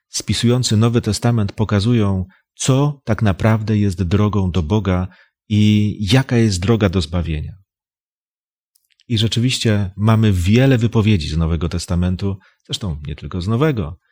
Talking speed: 130 wpm